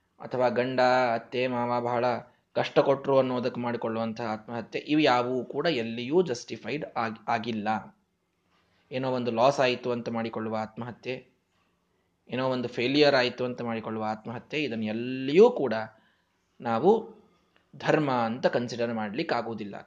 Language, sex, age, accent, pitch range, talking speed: Kannada, male, 20-39, native, 115-180 Hz, 120 wpm